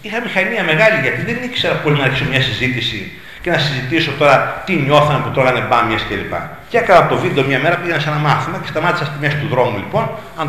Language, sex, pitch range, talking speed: Greek, male, 125-165 Hz, 225 wpm